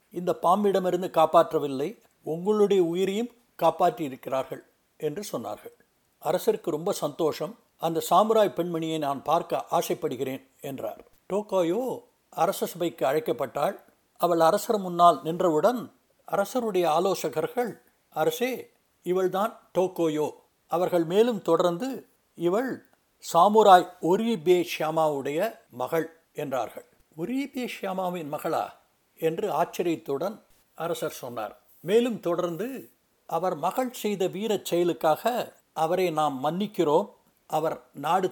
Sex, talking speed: male, 90 wpm